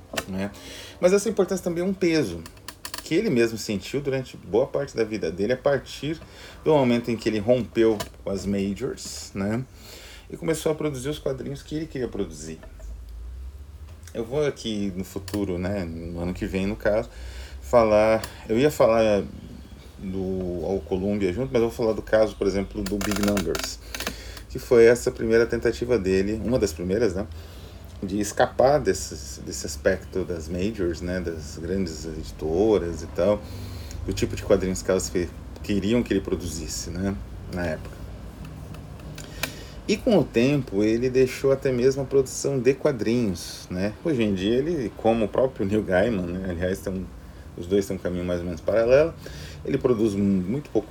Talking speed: 170 wpm